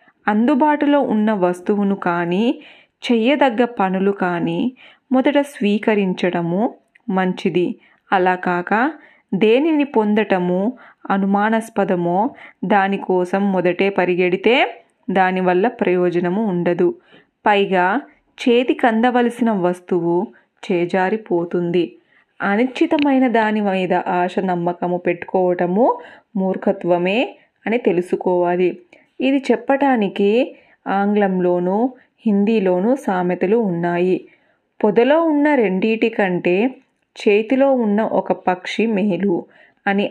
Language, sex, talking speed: Telugu, female, 75 wpm